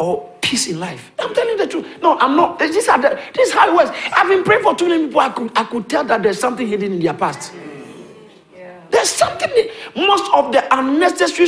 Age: 60-79